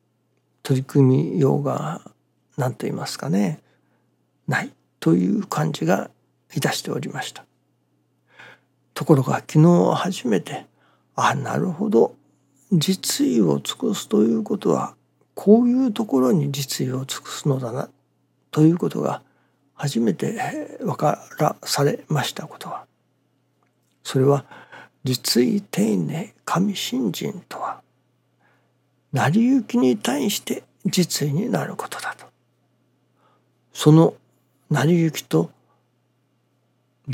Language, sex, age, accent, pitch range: Japanese, male, 60-79, native, 130-190 Hz